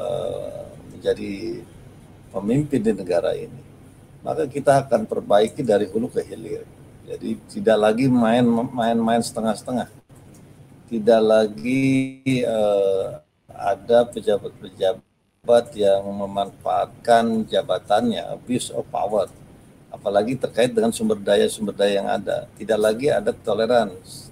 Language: Indonesian